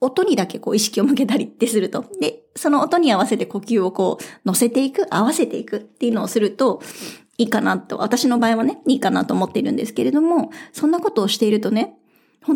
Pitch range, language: 225-280 Hz, Japanese